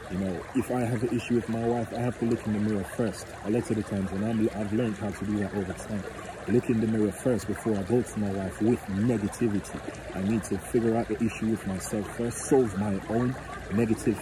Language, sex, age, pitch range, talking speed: English, male, 30-49, 95-115 Hz, 255 wpm